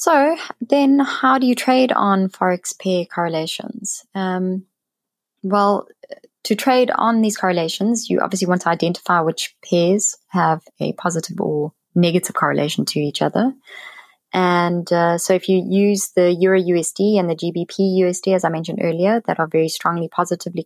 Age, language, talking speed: 20-39, English, 160 wpm